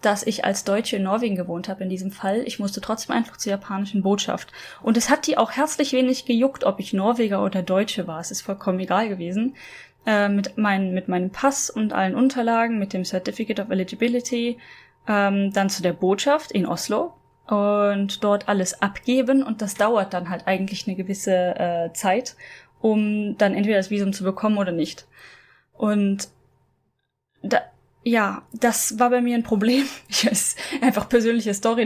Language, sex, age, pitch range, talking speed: German, female, 10-29, 195-235 Hz, 175 wpm